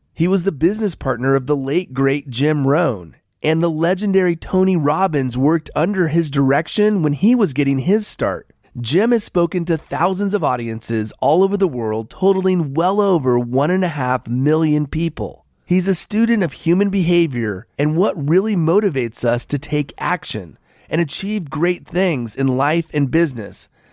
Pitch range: 135-185 Hz